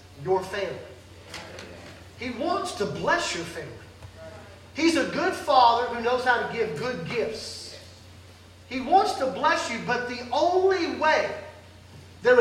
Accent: American